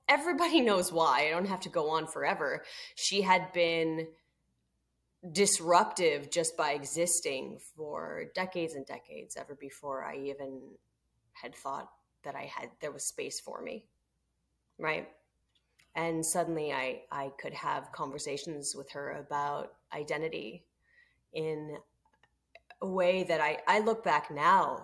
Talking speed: 135 wpm